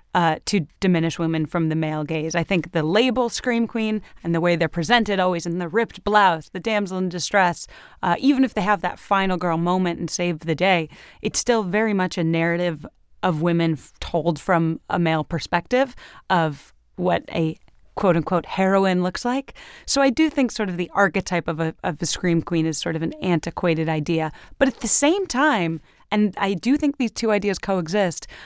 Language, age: English, 30-49